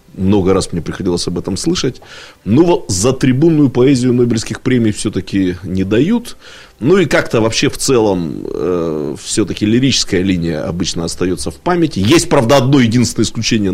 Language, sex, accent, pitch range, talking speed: Russian, male, native, 105-145 Hz, 155 wpm